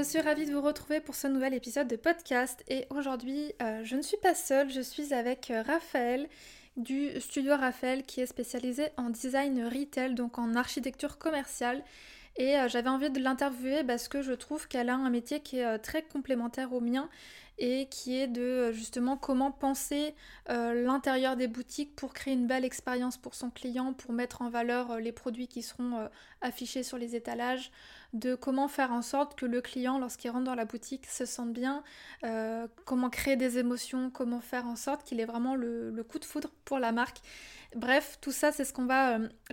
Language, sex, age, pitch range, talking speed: French, female, 20-39, 245-280 Hz, 205 wpm